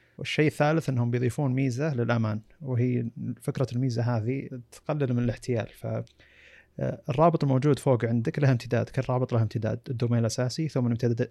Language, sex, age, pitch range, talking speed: Arabic, male, 20-39, 115-135 Hz, 140 wpm